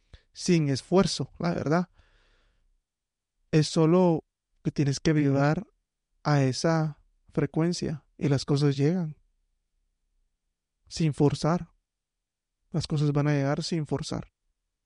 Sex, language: male, English